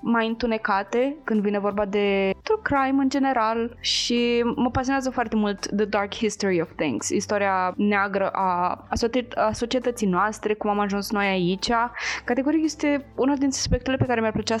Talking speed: 170 wpm